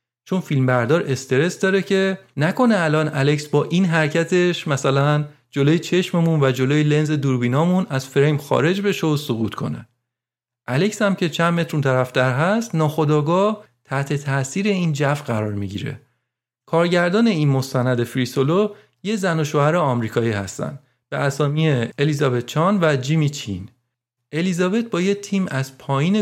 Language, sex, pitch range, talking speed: Persian, male, 130-180 Hz, 140 wpm